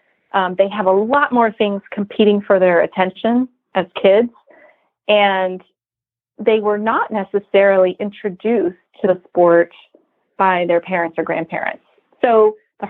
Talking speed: 135 wpm